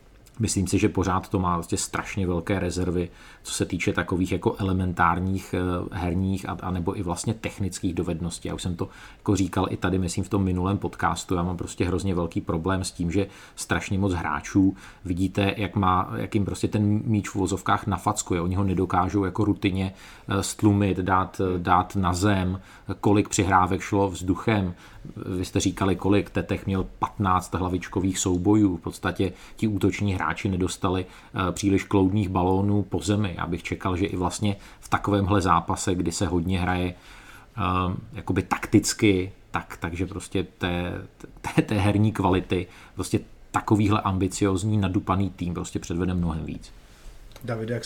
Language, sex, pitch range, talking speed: Czech, male, 90-100 Hz, 155 wpm